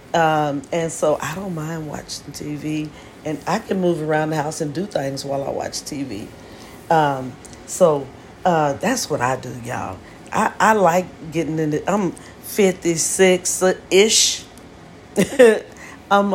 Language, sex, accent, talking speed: English, female, American, 140 wpm